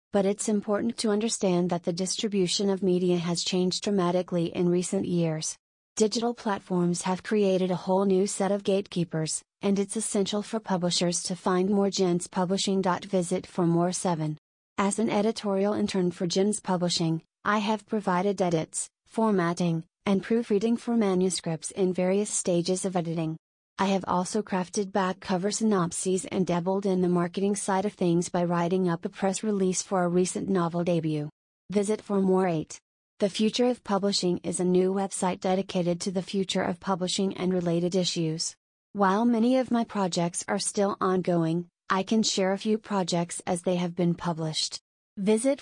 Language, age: English, 30-49